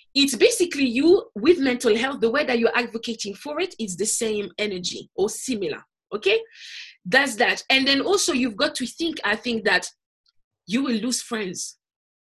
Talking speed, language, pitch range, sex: 175 wpm, English, 220-295 Hz, female